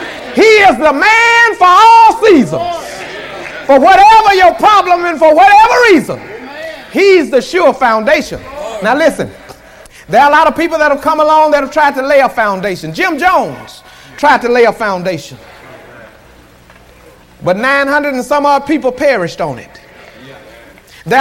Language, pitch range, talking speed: English, 225-300 Hz, 155 wpm